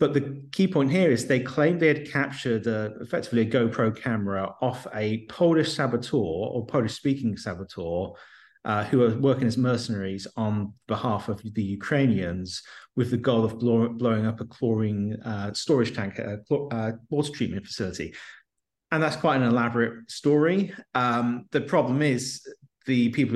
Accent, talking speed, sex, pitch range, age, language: British, 165 wpm, male, 100-130 Hz, 30-49, English